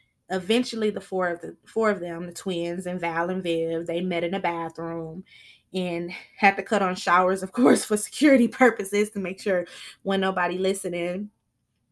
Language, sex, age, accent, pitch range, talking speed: English, female, 20-39, American, 175-205 Hz, 180 wpm